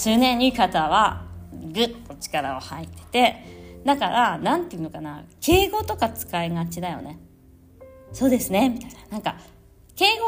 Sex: female